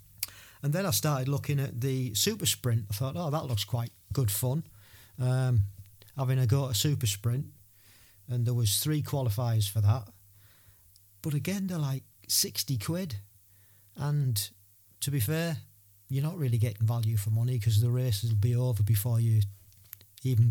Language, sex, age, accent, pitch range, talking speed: English, male, 40-59, British, 105-135 Hz, 170 wpm